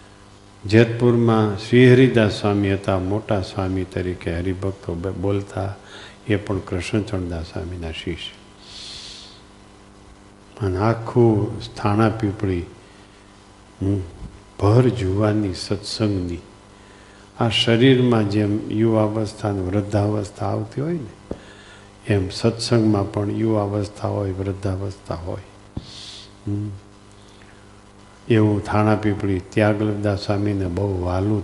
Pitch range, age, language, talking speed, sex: 100-105 Hz, 50-69, Gujarati, 80 wpm, male